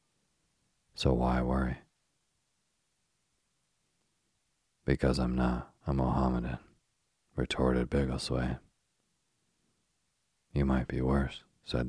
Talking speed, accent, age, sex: 75 wpm, American, 40-59, male